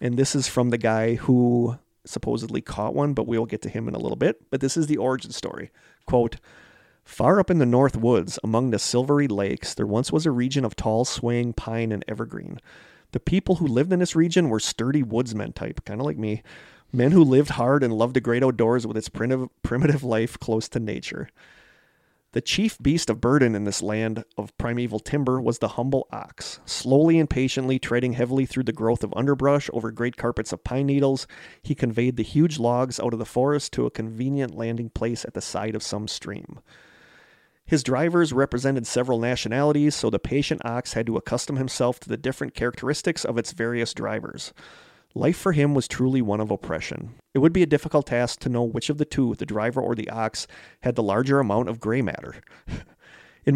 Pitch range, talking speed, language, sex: 115-135 Hz, 205 wpm, English, male